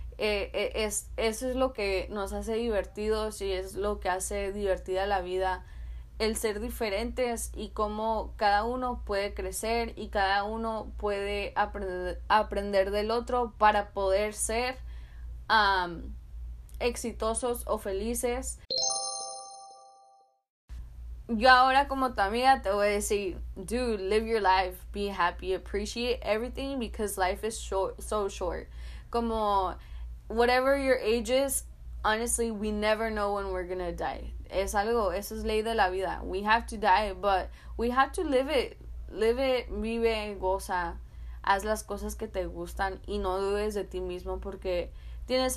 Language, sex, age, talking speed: Spanish, female, 10-29, 150 wpm